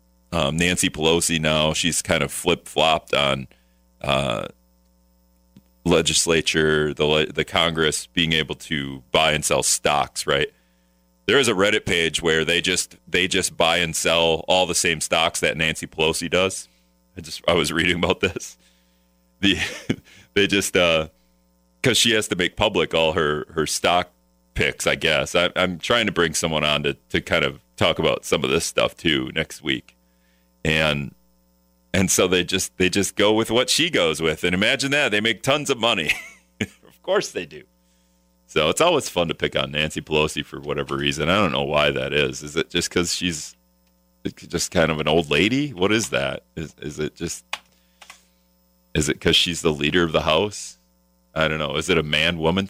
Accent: American